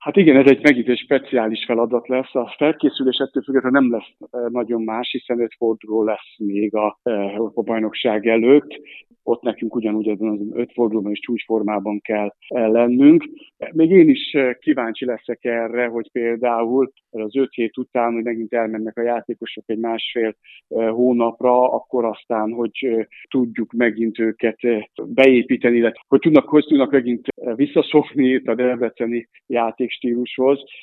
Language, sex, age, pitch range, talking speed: Hungarian, male, 50-69, 115-130 Hz, 140 wpm